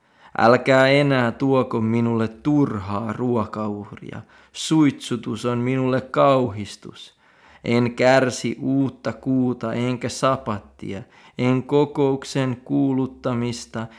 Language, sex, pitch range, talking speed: Finnish, male, 110-135 Hz, 80 wpm